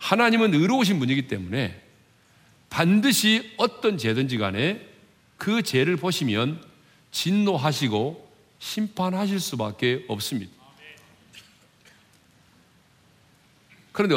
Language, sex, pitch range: Korean, male, 110-185 Hz